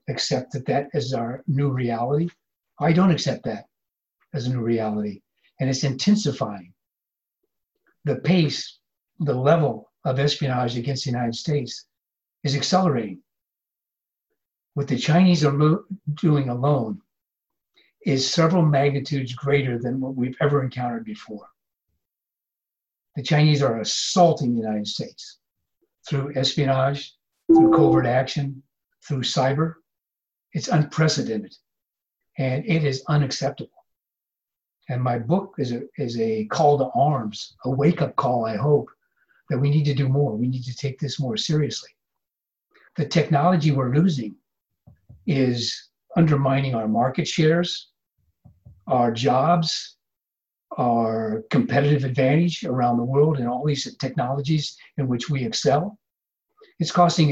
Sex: male